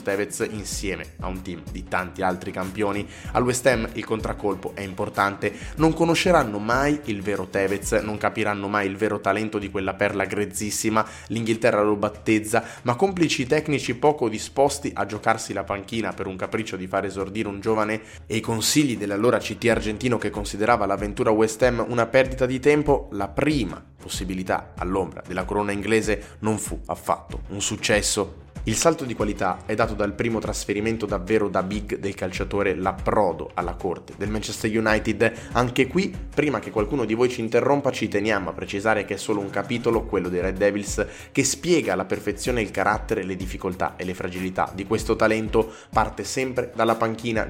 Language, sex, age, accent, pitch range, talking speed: Italian, male, 20-39, native, 100-115 Hz, 175 wpm